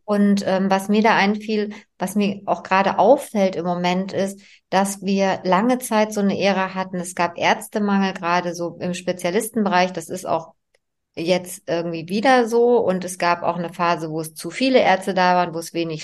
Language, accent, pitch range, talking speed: German, German, 180-205 Hz, 195 wpm